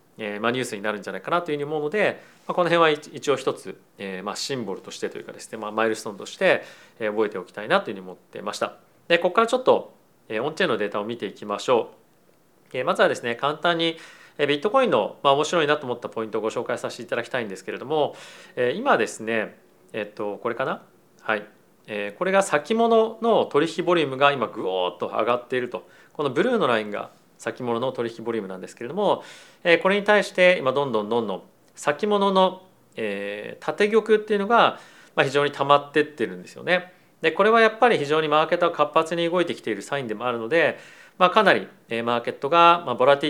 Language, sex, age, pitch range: Japanese, male, 40-59, 120-185 Hz